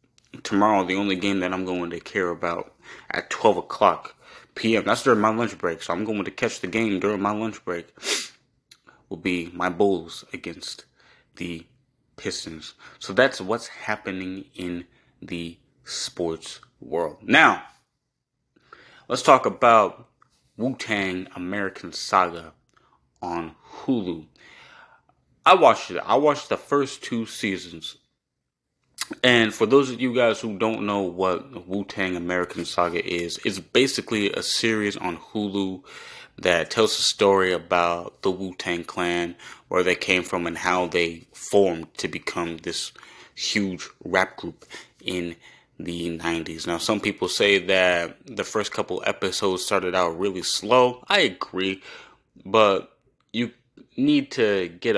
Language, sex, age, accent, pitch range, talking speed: English, male, 30-49, American, 85-110 Hz, 140 wpm